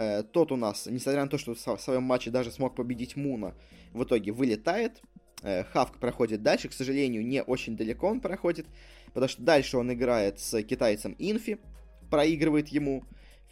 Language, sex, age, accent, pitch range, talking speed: Russian, male, 20-39, native, 115-150 Hz, 170 wpm